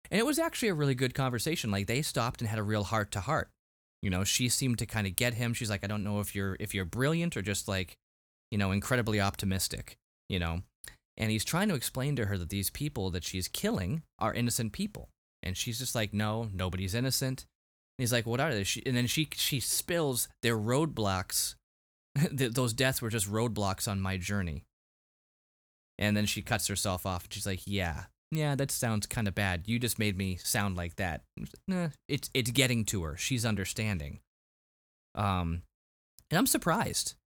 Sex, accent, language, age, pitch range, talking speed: male, American, English, 20-39, 95-125 Hz, 195 wpm